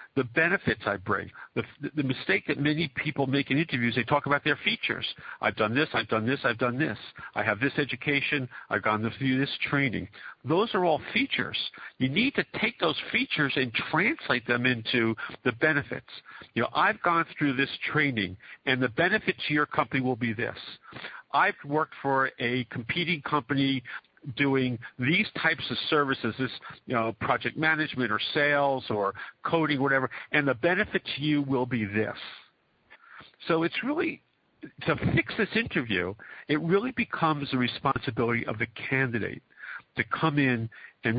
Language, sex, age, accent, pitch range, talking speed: English, male, 50-69, American, 120-150 Hz, 170 wpm